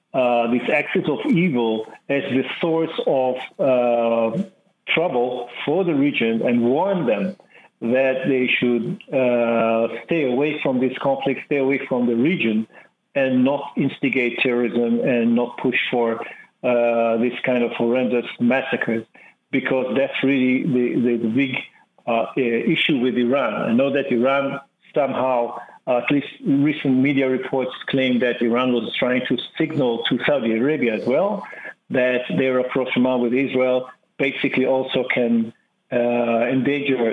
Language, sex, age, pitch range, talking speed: English, male, 50-69, 120-140 Hz, 145 wpm